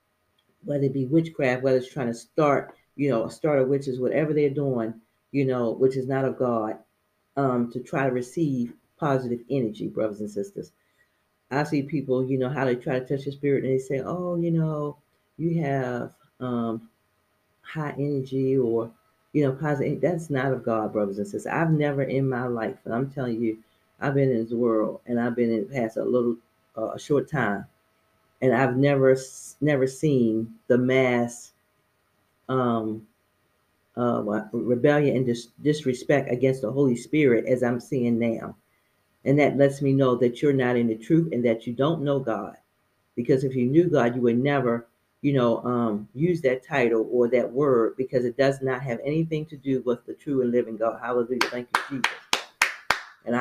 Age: 40-59